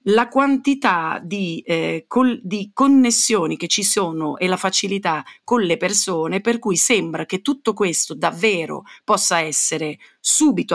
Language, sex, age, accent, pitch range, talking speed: Italian, female, 40-59, native, 175-240 Hz, 135 wpm